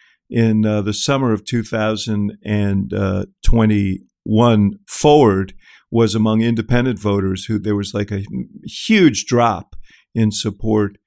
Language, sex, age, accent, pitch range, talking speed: English, male, 50-69, American, 100-120 Hz, 110 wpm